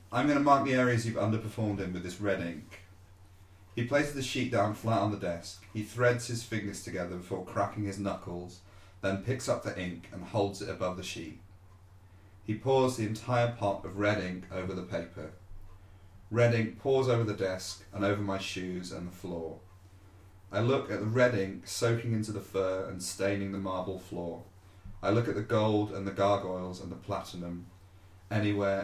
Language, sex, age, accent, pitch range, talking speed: English, male, 30-49, British, 95-110 Hz, 195 wpm